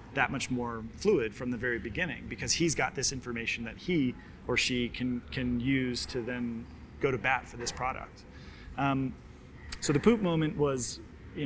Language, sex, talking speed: English, male, 185 wpm